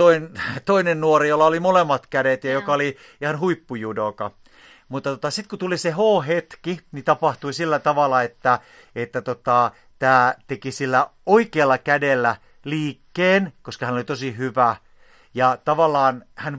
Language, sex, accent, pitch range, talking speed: Finnish, male, native, 125-165 Hz, 140 wpm